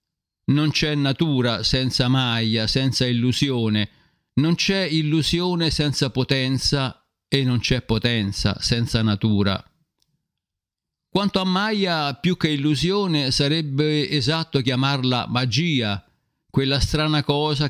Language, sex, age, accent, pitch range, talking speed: Italian, male, 50-69, native, 115-150 Hz, 105 wpm